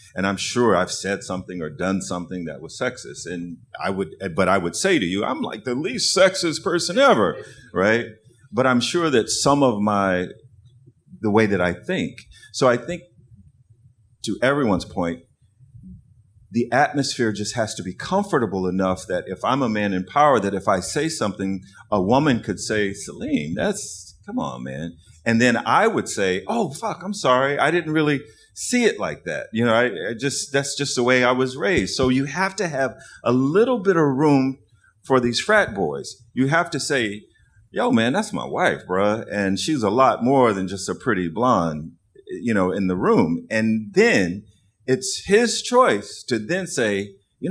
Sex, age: male, 50-69